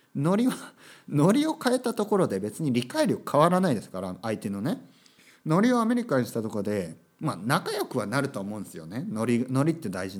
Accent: native